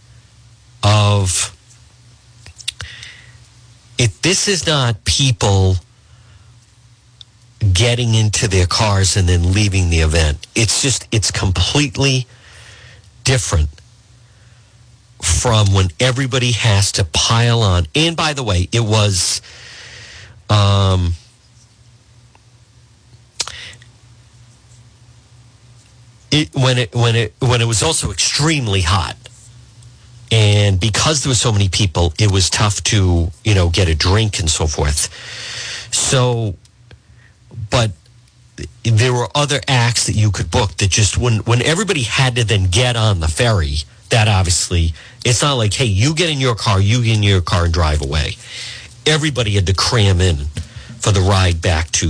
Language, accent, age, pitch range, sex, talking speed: English, American, 50-69, 100-120 Hz, male, 130 wpm